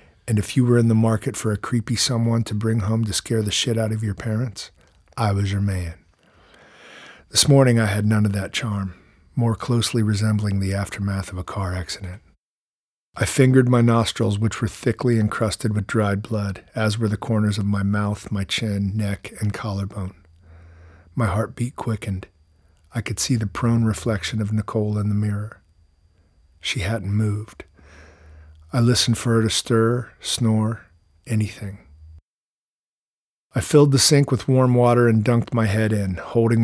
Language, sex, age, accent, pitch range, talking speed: English, male, 40-59, American, 95-115 Hz, 170 wpm